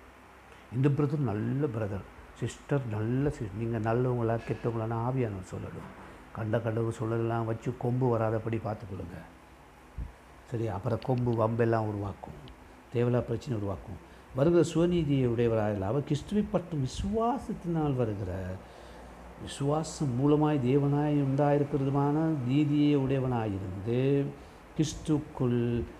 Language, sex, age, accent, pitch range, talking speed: Tamil, male, 60-79, native, 105-140 Hz, 100 wpm